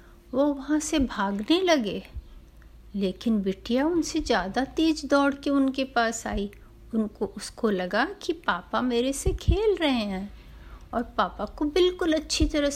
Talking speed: 145 wpm